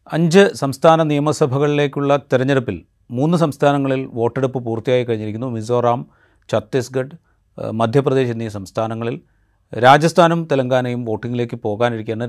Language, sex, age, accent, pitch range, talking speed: Malayalam, male, 30-49, native, 115-145 Hz, 90 wpm